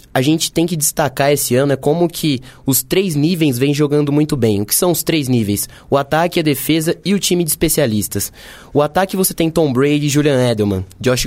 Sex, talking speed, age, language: male, 225 wpm, 20-39, Portuguese